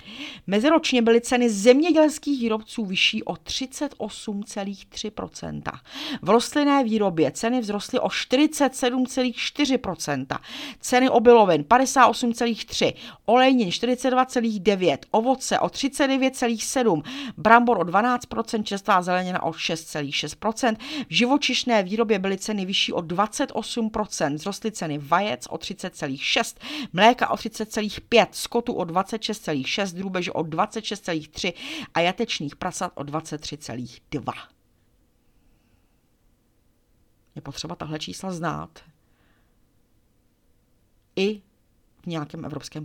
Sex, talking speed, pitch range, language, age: female, 90 wpm, 155-240 Hz, Czech, 40-59